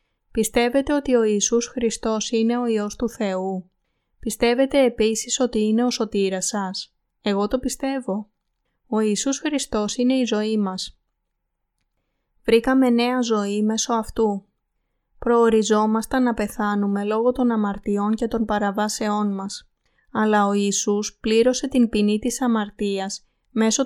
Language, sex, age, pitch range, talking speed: Greek, female, 20-39, 205-240 Hz, 130 wpm